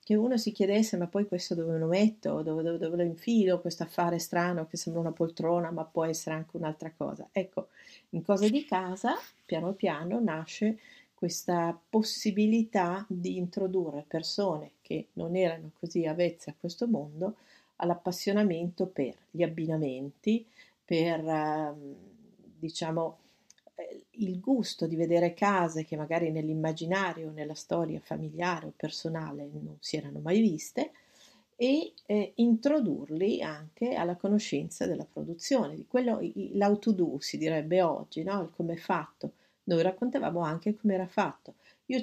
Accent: native